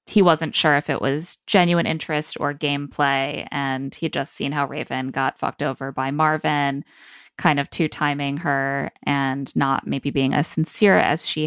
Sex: female